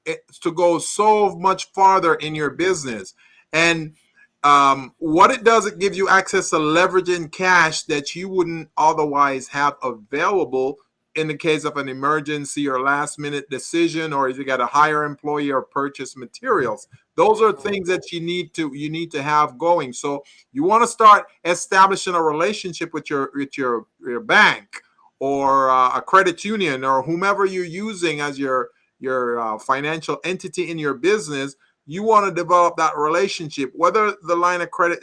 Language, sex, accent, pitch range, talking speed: English, male, American, 145-185 Hz, 175 wpm